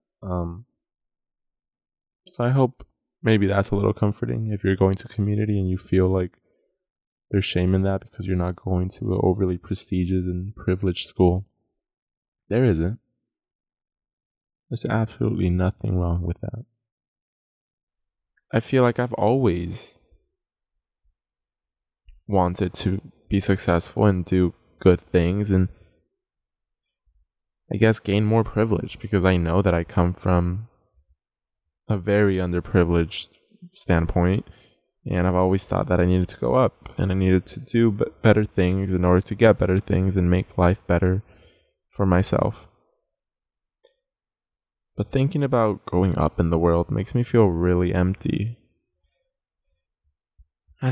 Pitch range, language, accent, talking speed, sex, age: 90-110 Hz, English, American, 135 wpm, male, 20-39